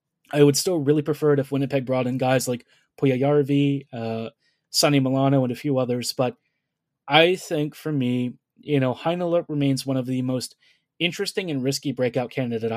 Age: 20-39